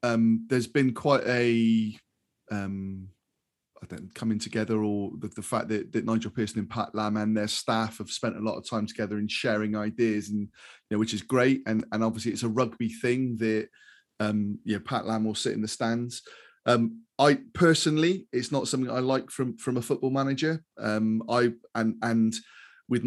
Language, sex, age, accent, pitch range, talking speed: English, male, 30-49, British, 110-130 Hz, 200 wpm